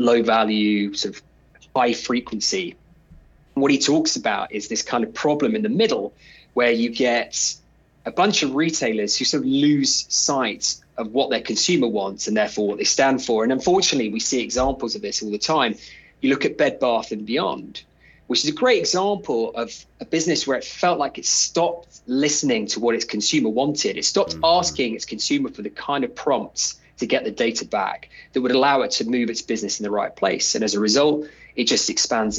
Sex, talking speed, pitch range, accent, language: male, 200 wpm, 110-150 Hz, British, English